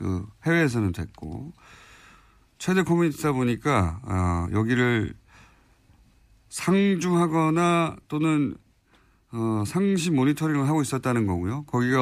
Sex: male